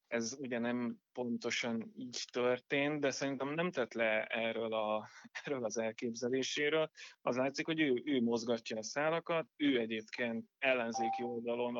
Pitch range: 115-155 Hz